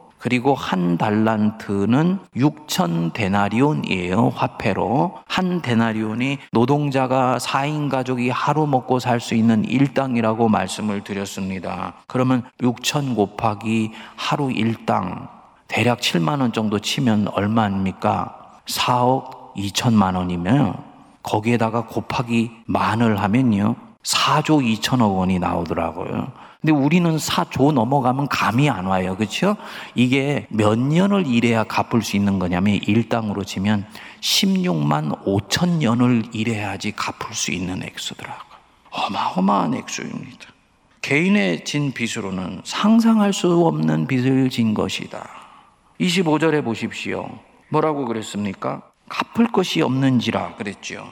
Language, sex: Korean, male